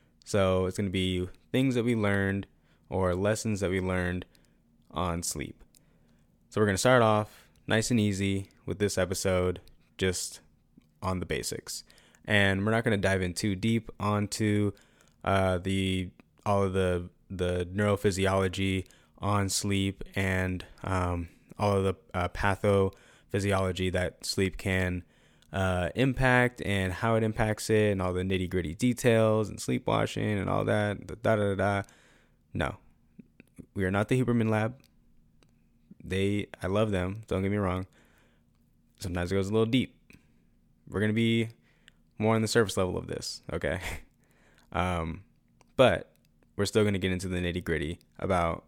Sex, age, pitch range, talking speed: male, 20-39, 90-105 Hz, 155 wpm